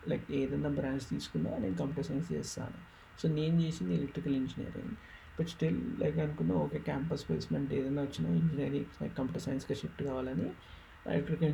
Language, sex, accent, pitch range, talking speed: Telugu, male, native, 125-155 Hz, 145 wpm